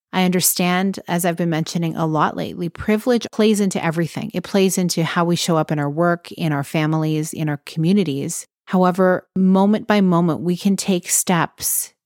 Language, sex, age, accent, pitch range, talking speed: English, female, 30-49, American, 160-195 Hz, 185 wpm